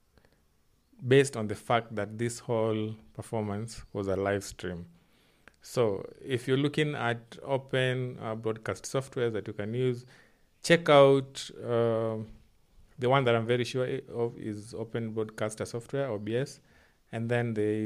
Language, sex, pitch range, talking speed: English, male, 110-125 Hz, 145 wpm